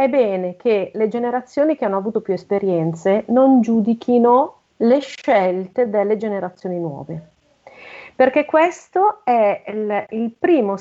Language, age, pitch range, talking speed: Italian, 40-59, 195-270 Hz, 130 wpm